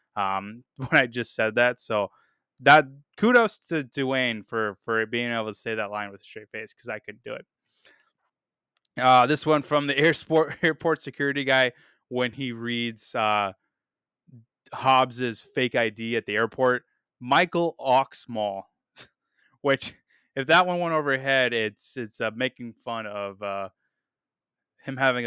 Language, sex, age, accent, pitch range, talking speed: English, male, 20-39, American, 115-150 Hz, 150 wpm